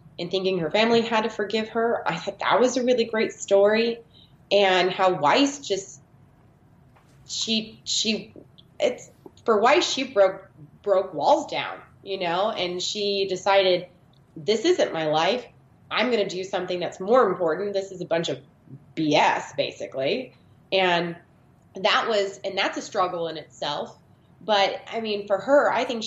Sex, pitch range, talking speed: female, 160-205 Hz, 160 wpm